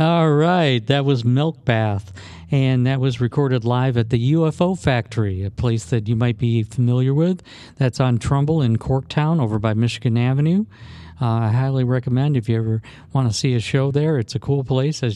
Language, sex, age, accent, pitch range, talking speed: English, male, 50-69, American, 115-140 Hz, 200 wpm